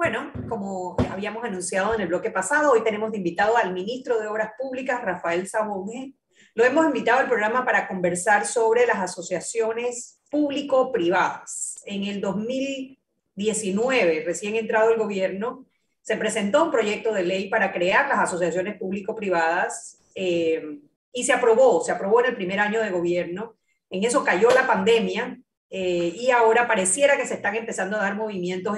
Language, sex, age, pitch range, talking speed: Spanish, female, 30-49, 185-255 Hz, 155 wpm